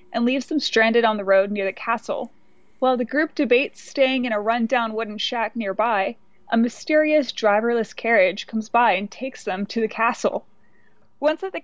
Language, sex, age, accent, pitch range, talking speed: English, female, 20-39, American, 215-265 Hz, 185 wpm